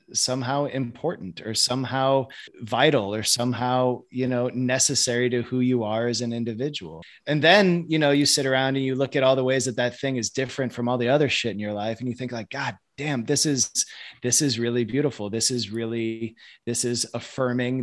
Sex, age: male, 20-39